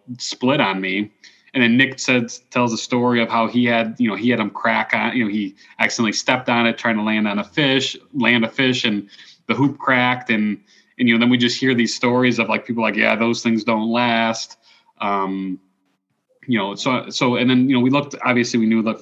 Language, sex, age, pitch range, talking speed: English, male, 30-49, 100-125 Hz, 235 wpm